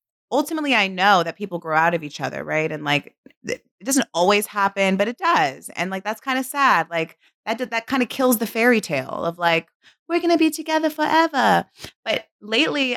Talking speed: 210 wpm